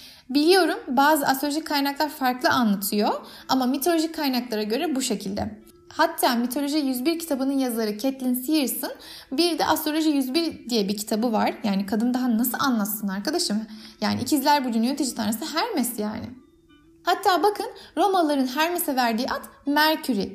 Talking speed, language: 140 wpm, Turkish